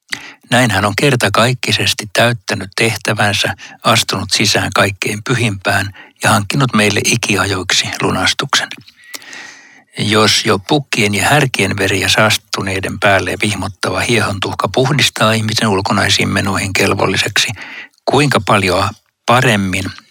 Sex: male